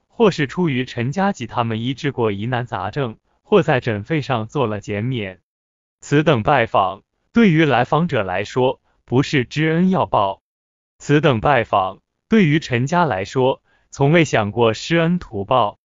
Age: 20-39